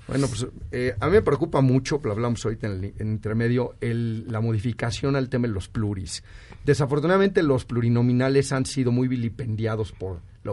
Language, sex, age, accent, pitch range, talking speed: Spanish, male, 40-59, Mexican, 110-135 Hz, 170 wpm